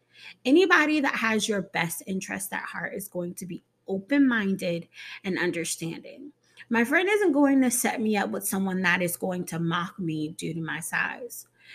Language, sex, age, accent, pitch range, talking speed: English, female, 30-49, American, 175-240 Hz, 180 wpm